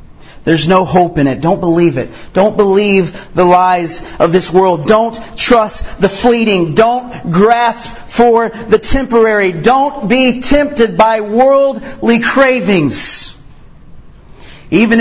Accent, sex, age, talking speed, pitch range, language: American, male, 40-59, 125 wpm, 170-230 Hz, English